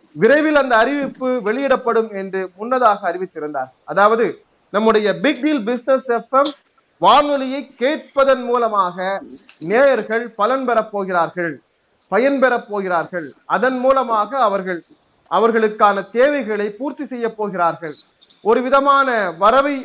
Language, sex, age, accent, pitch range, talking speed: Tamil, male, 30-49, native, 195-255 Hz, 85 wpm